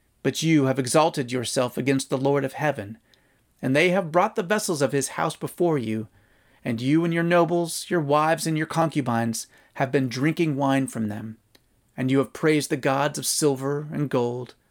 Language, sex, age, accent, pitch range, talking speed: English, male, 30-49, American, 125-160 Hz, 190 wpm